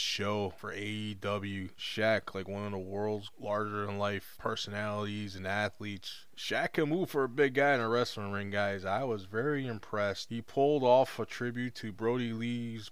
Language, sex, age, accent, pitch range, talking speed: English, male, 20-39, American, 100-115 Hz, 170 wpm